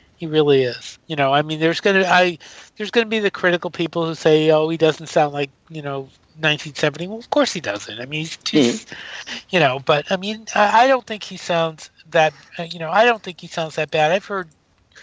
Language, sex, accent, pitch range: English, male, American, 140-165 Hz